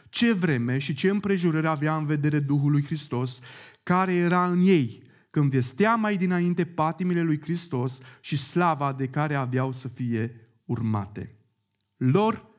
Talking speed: 150 wpm